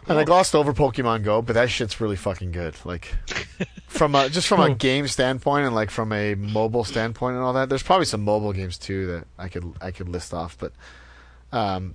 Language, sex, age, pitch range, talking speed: English, male, 30-49, 90-115 Hz, 220 wpm